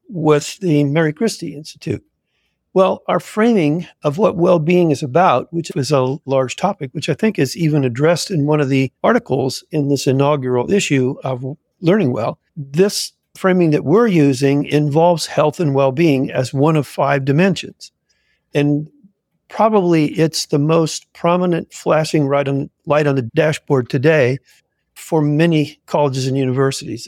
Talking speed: 150 wpm